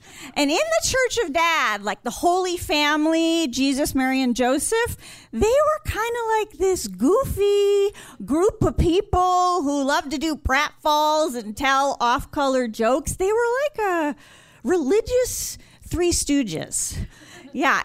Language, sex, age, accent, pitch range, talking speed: English, female, 40-59, American, 230-330 Hz, 140 wpm